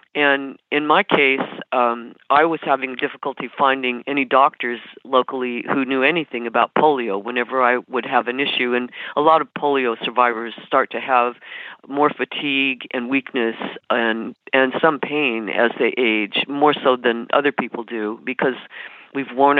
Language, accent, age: English, American, 50-69